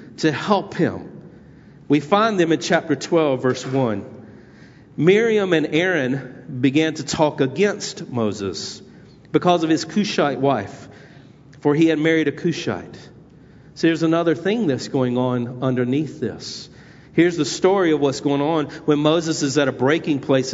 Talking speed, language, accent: 155 wpm, English, American